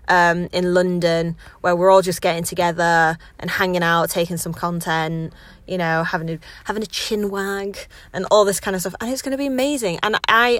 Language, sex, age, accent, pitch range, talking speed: English, female, 20-39, British, 175-225 Hz, 210 wpm